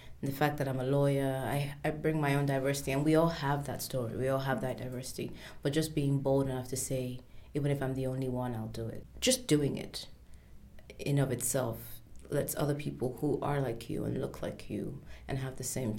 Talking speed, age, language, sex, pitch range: 225 wpm, 30-49, English, female, 125-145 Hz